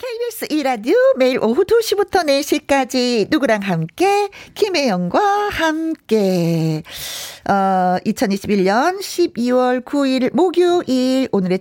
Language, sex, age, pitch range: Korean, female, 40-59, 185-275 Hz